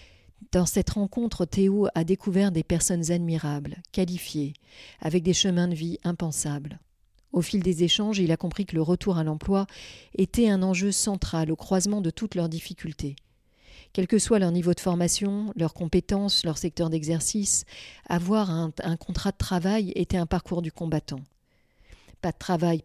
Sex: female